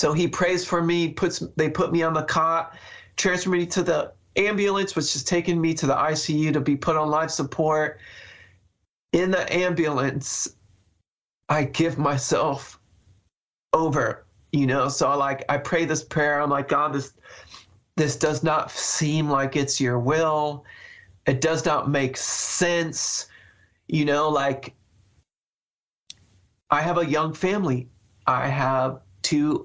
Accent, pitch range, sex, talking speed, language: American, 130-160 Hz, male, 150 wpm, English